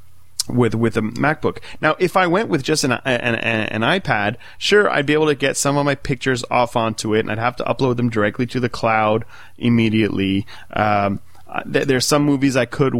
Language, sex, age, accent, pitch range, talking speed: English, male, 30-49, American, 105-135 Hz, 210 wpm